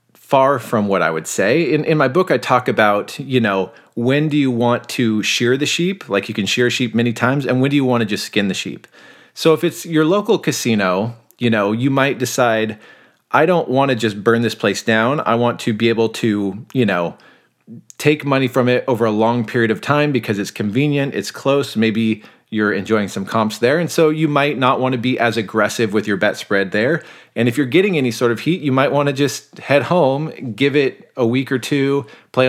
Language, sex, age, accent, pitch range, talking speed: English, male, 30-49, American, 110-140 Hz, 230 wpm